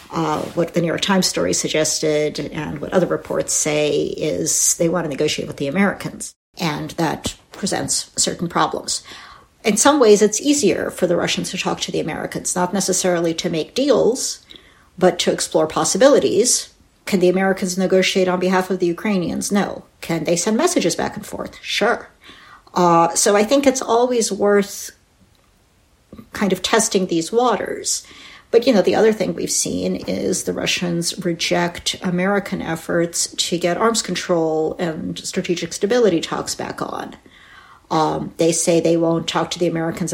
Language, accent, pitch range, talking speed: English, American, 165-200 Hz, 165 wpm